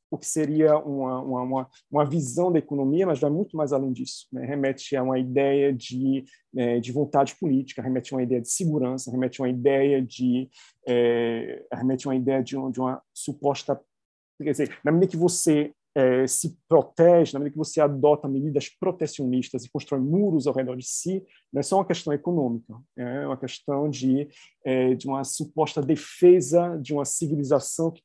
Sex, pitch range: male, 130-150 Hz